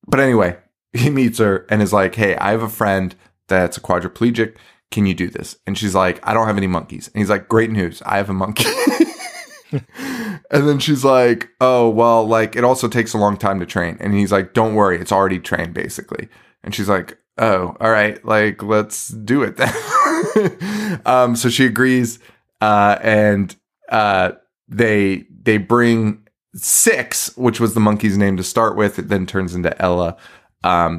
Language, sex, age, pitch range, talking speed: English, male, 20-39, 95-125 Hz, 190 wpm